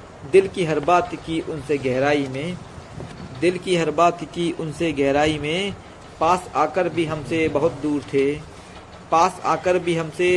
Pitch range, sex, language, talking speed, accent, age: 145-180 Hz, male, Hindi, 155 wpm, native, 50-69